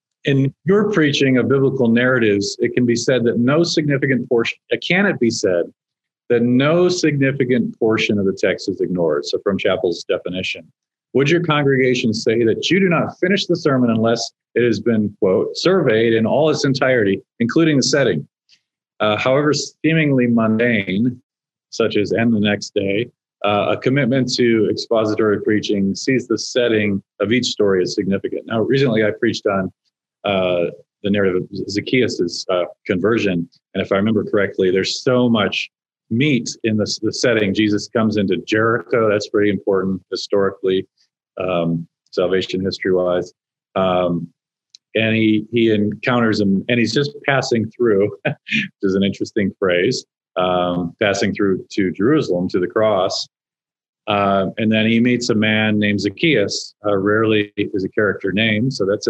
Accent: American